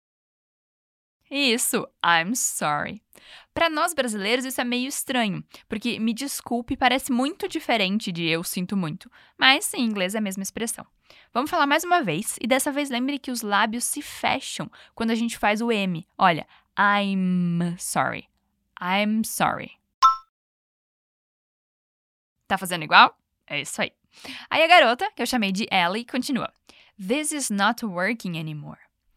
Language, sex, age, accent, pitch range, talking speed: Portuguese, female, 10-29, Brazilian, 200-265 Hz, 150 wpm